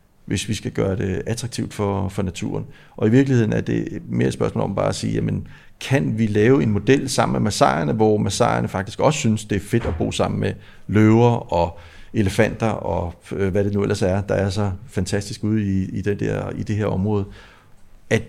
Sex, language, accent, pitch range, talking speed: male, Danish, native, 100-120 Hz, 215 wpm